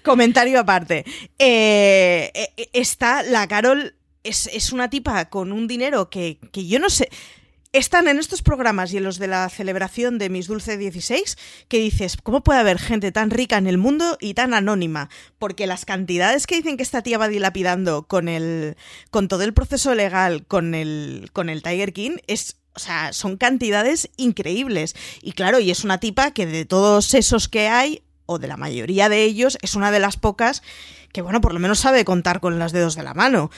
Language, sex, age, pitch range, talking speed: Spanish, female, 20-39, 185-245 Hz, 200 wpm